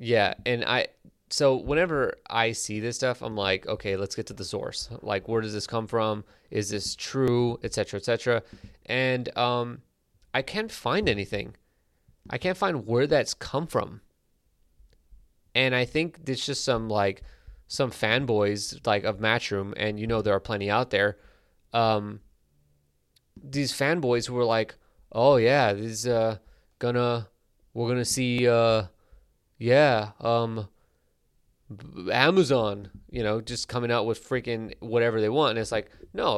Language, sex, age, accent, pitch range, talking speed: English, male, 20-39, American, 105-130 Hz, 165 wpm